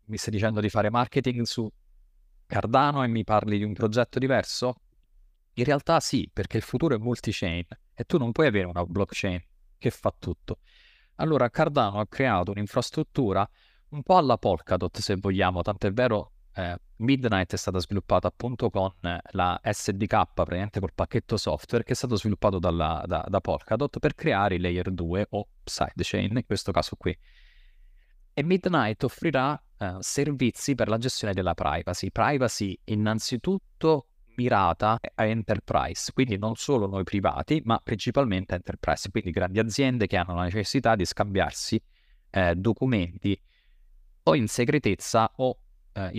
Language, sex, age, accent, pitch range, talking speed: Italian, male, 30-49, native, 95-125 Hz, 155 wpm